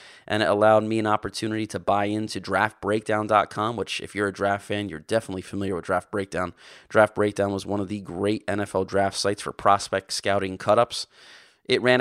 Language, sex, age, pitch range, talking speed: English, male, 30-49, 95-110 Hz, 190 wpm